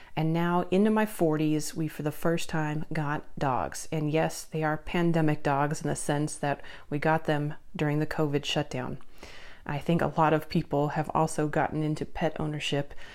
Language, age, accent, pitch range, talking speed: English, 30-49, American, 150-175 Hz, 185 wpm